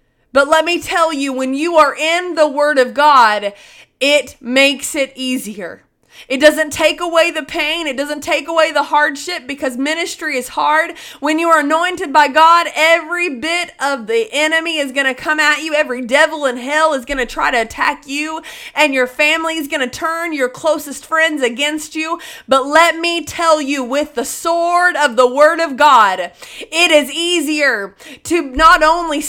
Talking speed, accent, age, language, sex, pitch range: 190 wpm, American, 20-39, English, female, 275-330 Hz